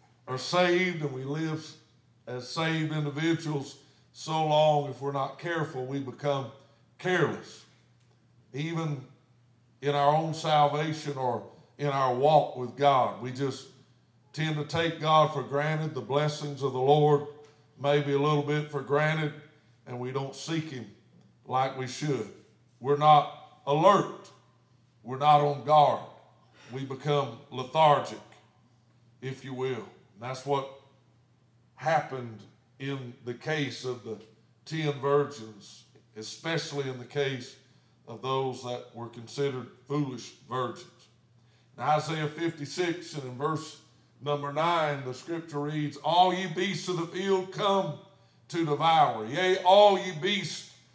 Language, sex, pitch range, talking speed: English, male, 125-155 Hz, 135 wpm